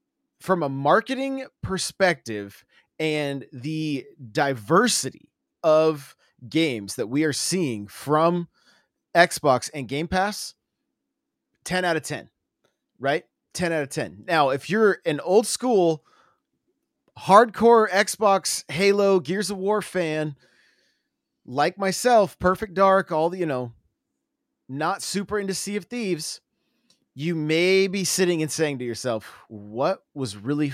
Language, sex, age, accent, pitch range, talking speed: English, male, 30-49, American, 135-190 Hz, 125 wpm